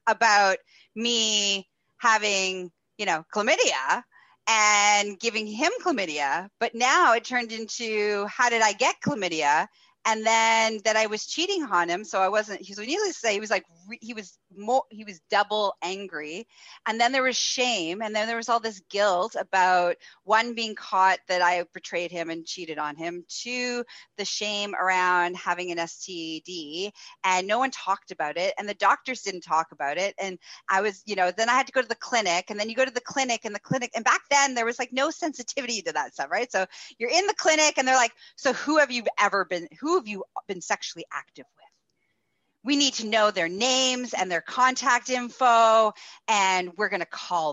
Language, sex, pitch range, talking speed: English, female, 185-255 Hz, 200 wpm